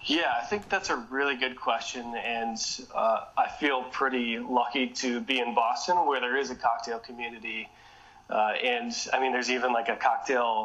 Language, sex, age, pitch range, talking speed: English, male, 20-39, 115-135 Hz, 185 wpm